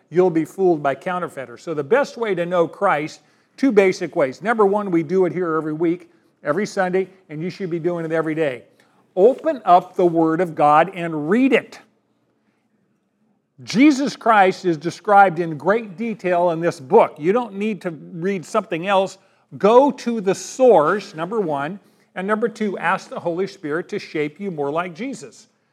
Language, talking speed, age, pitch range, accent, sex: English, 180 wpm, 50-69, 160-210 Hz, American, male